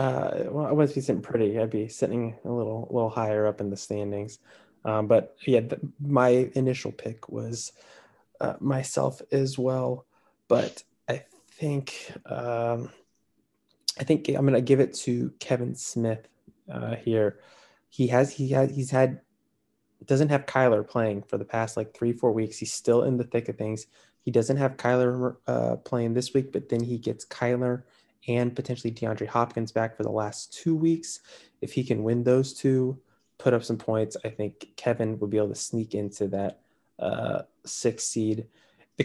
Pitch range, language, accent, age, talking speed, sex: 110-130 Hz, English, American, 20-39, 180 wpm, male